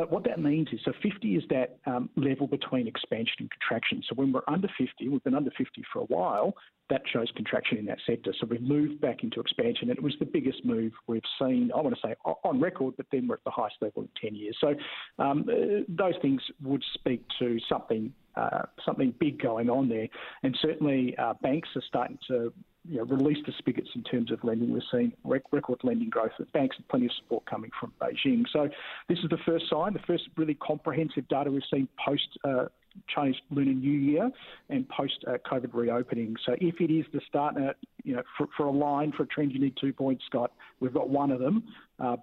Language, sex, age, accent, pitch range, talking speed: English, male, 50-69, Australian, 125-160 Hz, 220 wpm